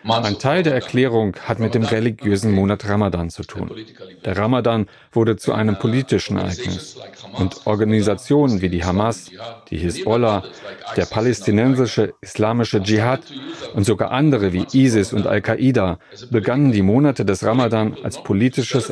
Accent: German